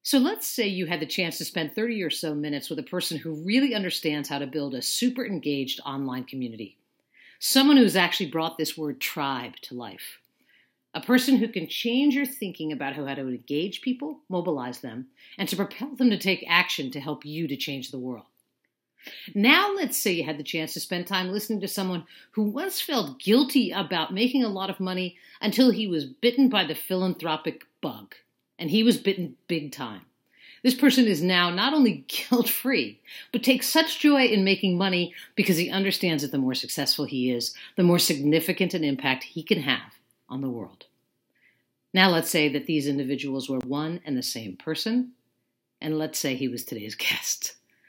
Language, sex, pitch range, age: English, female, 145-215 Hz, 50-69